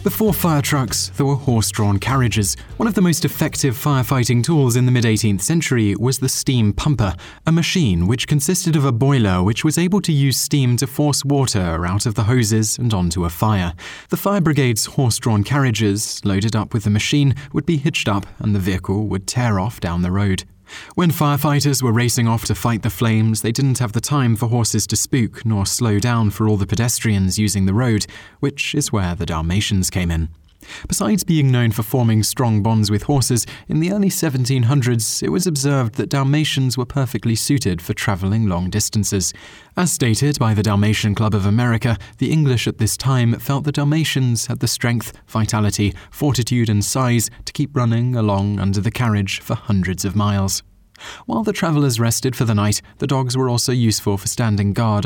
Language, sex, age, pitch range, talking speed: English, male, 20-39, 105-135 Hz, 195 wpm